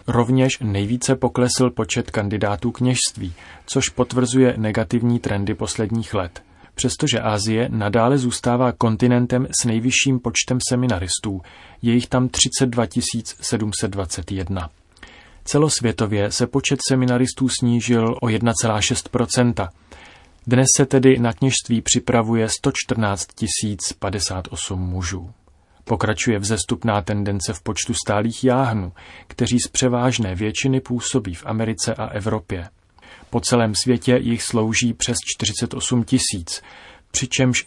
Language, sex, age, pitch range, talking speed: Czech, male, 30-49, 100-125 Hz, 105 wpm